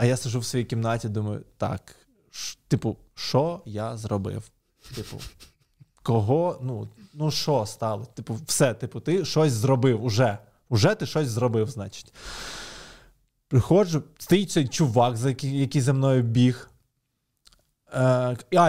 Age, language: 20-39, Ukrainian